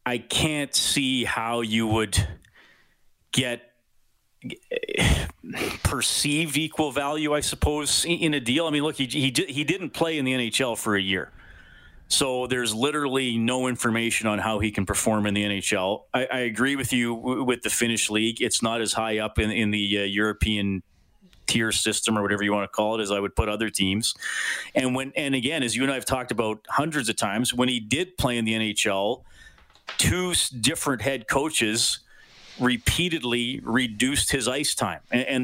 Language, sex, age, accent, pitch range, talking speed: English, male, 30-49, American, 110-135 Hz, 185 wpm